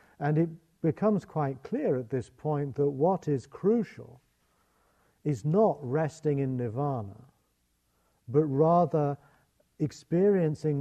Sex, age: male, 50-69